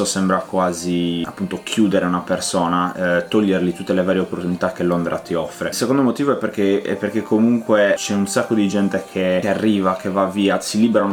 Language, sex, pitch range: Italian, male, 90-105 Hz